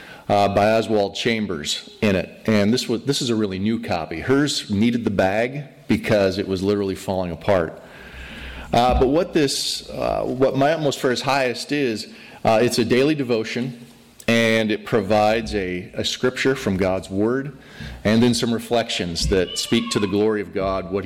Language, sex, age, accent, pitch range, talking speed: English, male, 40-59, American, 100-120 Hz, 175 wpm